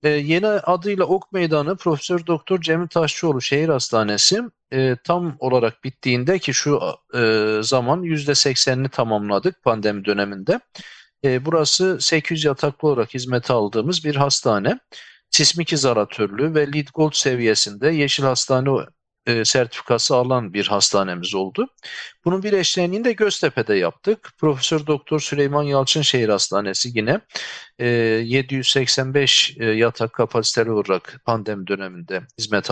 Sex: male